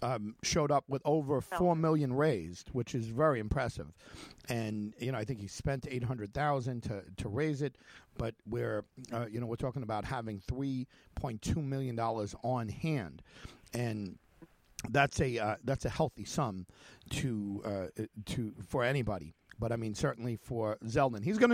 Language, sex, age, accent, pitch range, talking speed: English, male, 50-69, American, 115-145 Hz, 185 wpm